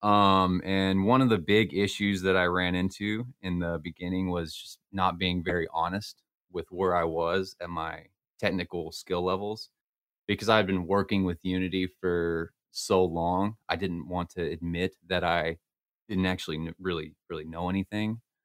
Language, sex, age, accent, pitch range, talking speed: English, male, 30-49, American, 85-95 Hz, 170 wpm